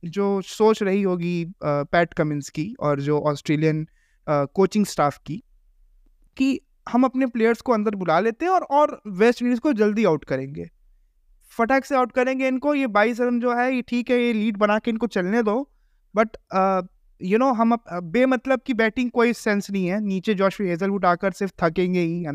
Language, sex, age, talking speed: Hindi, male, 20-39, 190 wpm